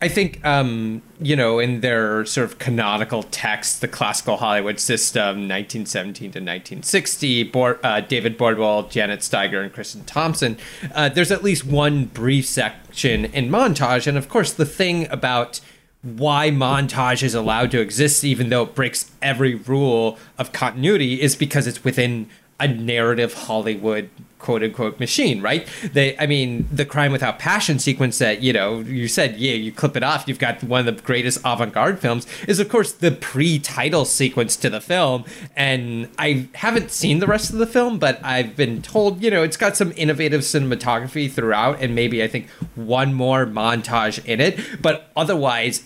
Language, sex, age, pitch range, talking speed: English, male, 30-49, 120-150 Hz, 175 wpm